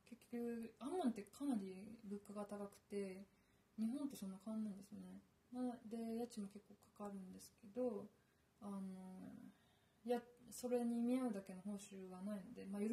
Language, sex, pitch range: Japanese, female, 195-235 Hz